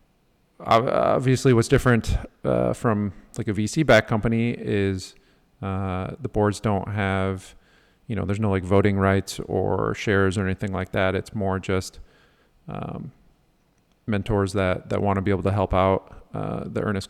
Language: English